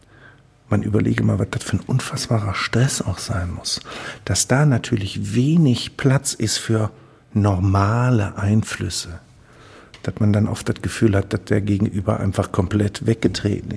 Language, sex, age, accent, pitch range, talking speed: German, male, 60-79, German, 100-120 Hz, 150 wpm